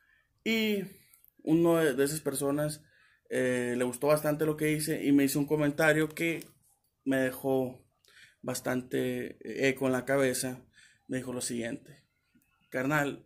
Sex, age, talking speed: male, 20-39, 135 wpm